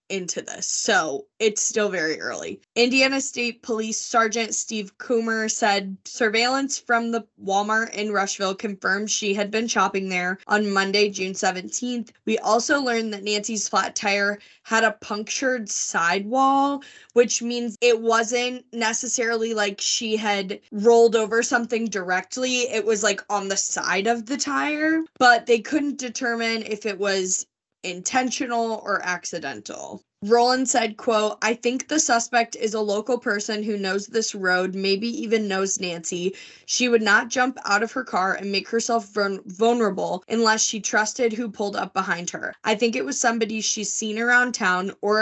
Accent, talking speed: American, 160 wpm